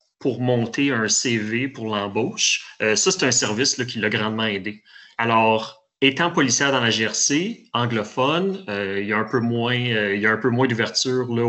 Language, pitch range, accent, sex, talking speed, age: French, 110-130 Hz, Canadian, male, 205 wpm, 30-49